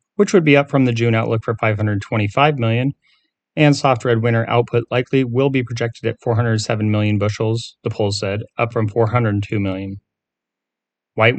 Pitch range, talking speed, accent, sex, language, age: 110-130 Hz, 170 wpm, American, male, English, 30-49